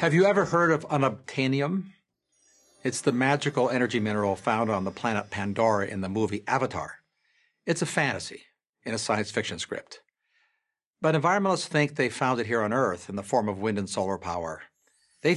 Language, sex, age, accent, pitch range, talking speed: English, male, 60-79, American, 105-160 Hz, 180 wpm